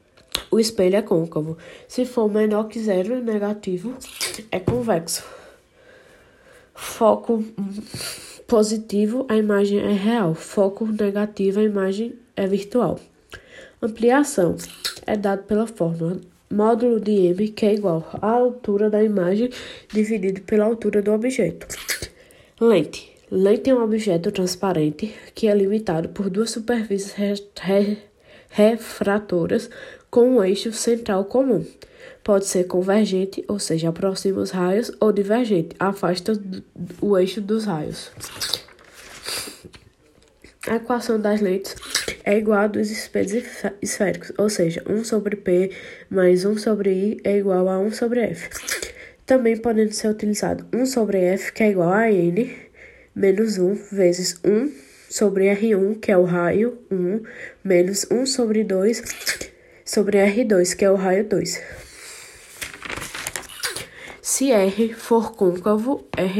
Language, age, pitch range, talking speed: Portuguese, 20-39, 195-230 Hz, 130 wpm